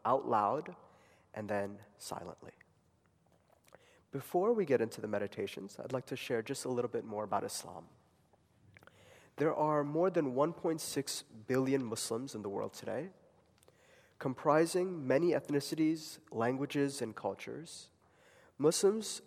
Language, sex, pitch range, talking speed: English, male, 120-155 Hz, 125 wpm